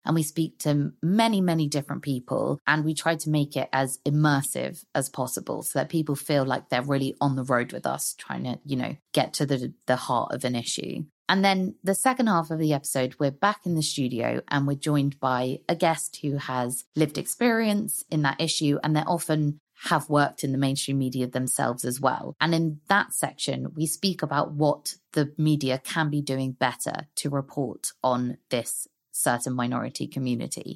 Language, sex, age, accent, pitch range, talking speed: English, female, 20-39, British, 140-190 Hz, 195 wpm